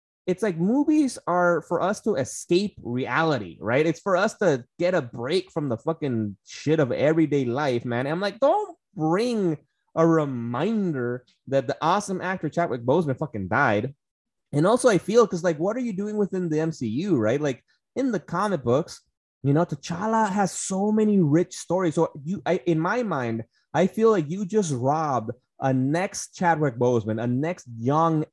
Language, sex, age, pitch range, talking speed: English, male, 20-39, 130-190 Hz, 180 wpm